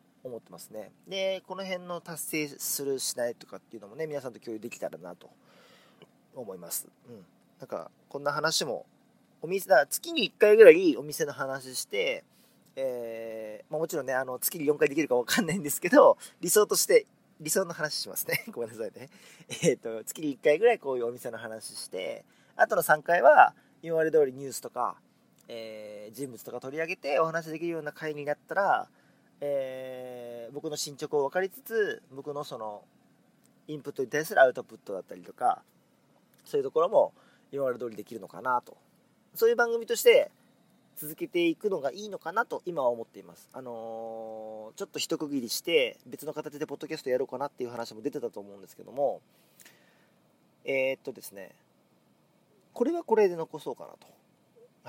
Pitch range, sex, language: 130-215 Hz, male, Japanese